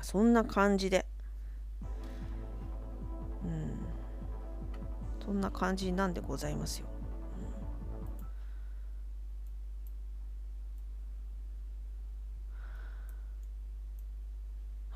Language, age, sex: Japanese, 30-49, female